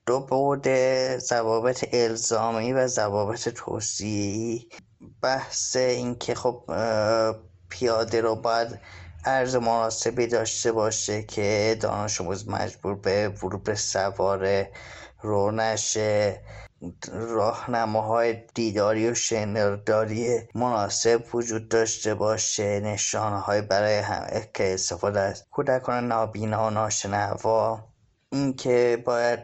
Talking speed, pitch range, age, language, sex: 90 wpm, 105-115 Hz, 20-39, Persian, male